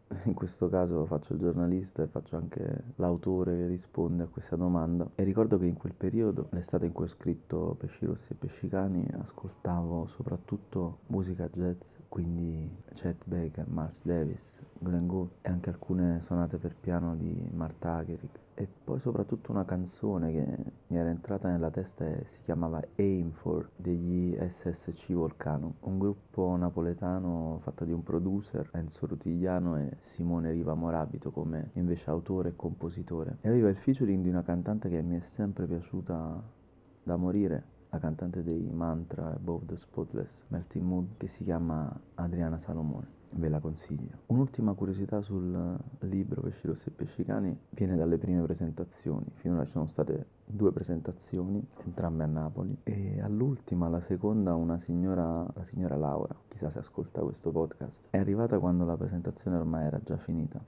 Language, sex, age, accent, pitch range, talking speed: Italian, male, 20-39, native, 85-95 Hz, 160 wpm